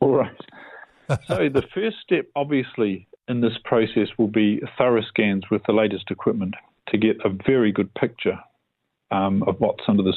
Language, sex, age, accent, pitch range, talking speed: English, male, 50-69, Australian, 105-130 Hz, 170 wpm